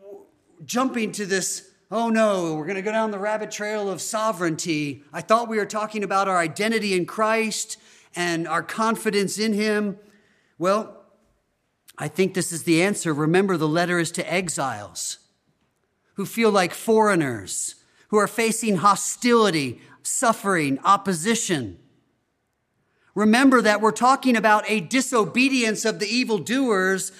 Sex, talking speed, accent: male, 140 wpm, American